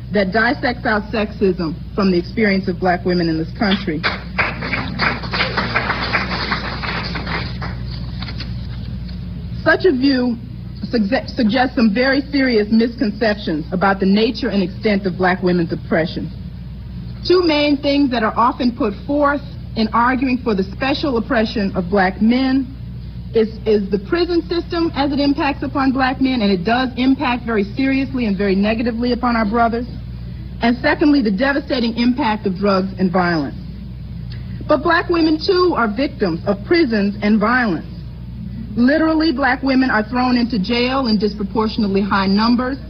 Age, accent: 40-59, American